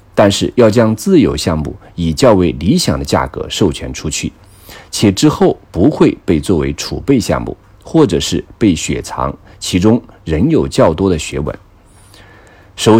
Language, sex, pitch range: Chinese, male, 80-110 Hz